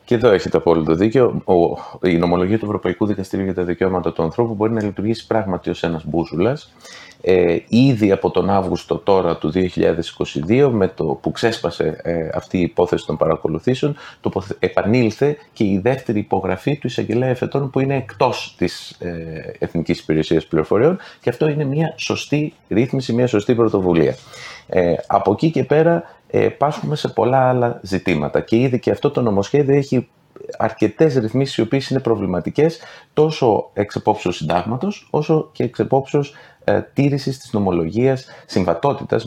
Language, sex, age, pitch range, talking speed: Greek, male, 30-49, 95-135 Hz, 155 wpm